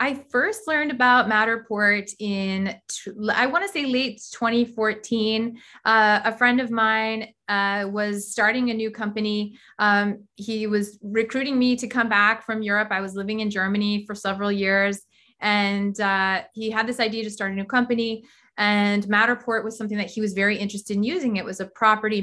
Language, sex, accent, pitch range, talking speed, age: English, female, American, 195-225 Hz, 180 wpm, 30-49